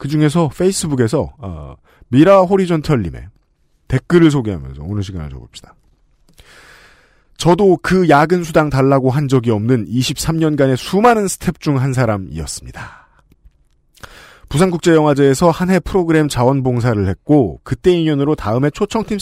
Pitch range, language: 120-165 Hz, Korean